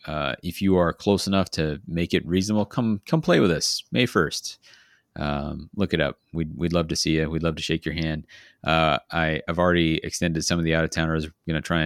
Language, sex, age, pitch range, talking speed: English, male, 30-49, 75-90 Hz, 250 wpm